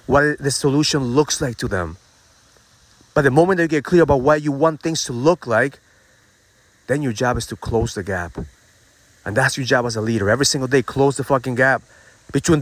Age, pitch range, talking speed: 30-49, 105-150 Hz, 210 wpm